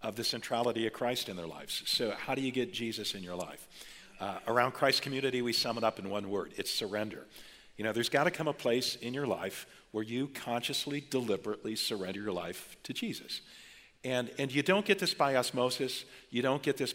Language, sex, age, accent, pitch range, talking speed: English, male, 50-69, American, 115-140 Hz, 215 wpm